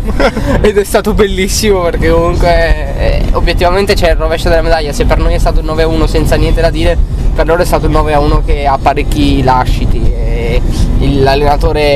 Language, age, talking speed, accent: Italian, 20-39, 205 wpm, native